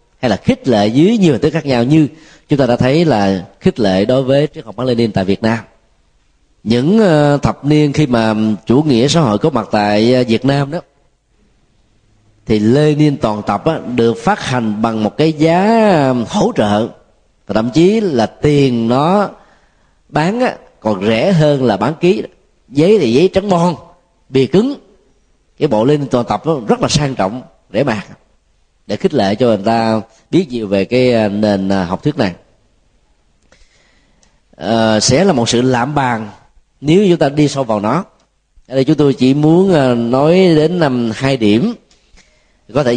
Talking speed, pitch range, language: 180 wpm, 110-155 Hz, Vietnamese